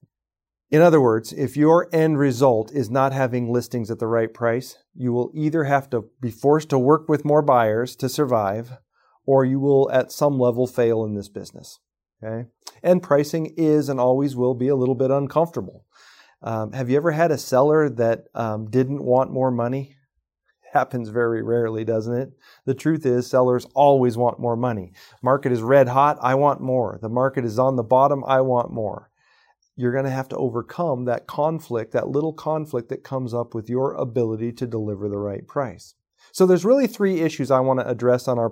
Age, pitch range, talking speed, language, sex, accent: 40-59, 115-140 Hz, 195 wpm, English, male, American